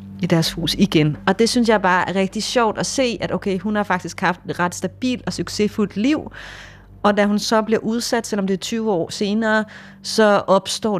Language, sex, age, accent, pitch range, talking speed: Danish, female, 30-49, native, 150-200 Hz, 225 wpm